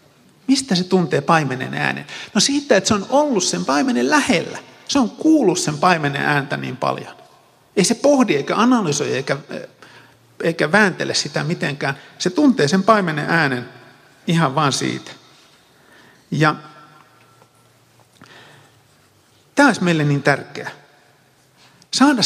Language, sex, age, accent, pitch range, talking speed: Finnish, male, 50-69, native, 140-215 Hz, 125 wpm